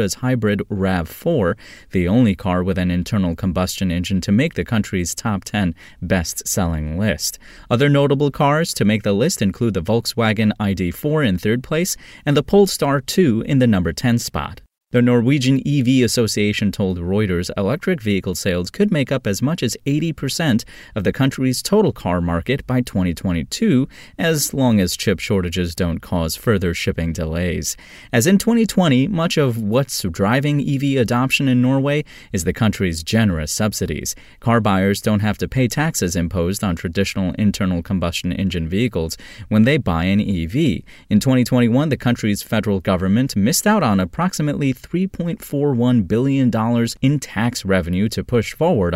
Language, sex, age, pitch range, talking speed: English, male, 30-49, 90-130 Hz, 155 wpm